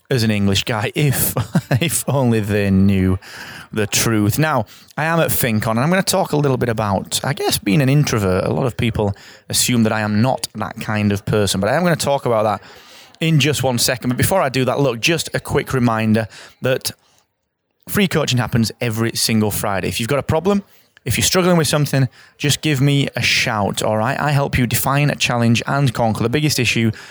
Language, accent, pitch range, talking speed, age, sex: English, British, 110-140 Hz, 220 wpm, 20-39, male